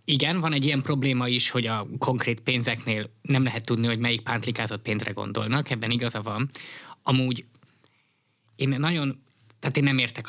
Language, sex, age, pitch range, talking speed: Hungarian, male, 20-39, 115-150 Hz, 165 wpm